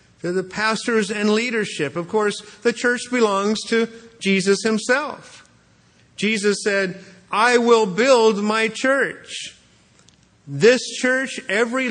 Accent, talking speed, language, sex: American, 110 wpm, English, male